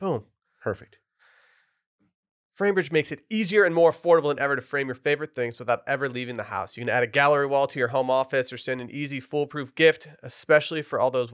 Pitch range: 125-150 Hz